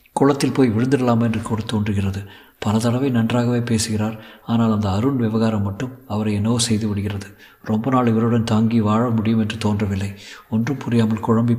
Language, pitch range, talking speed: Tamil, 105-120 Hz, 155 wpm